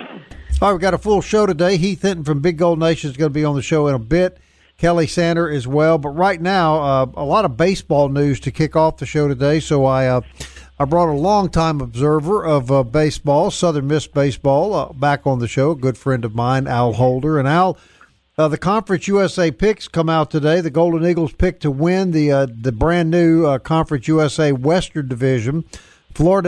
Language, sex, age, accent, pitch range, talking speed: English, male, 50-69, American, 140-175 Hz, 215 wpm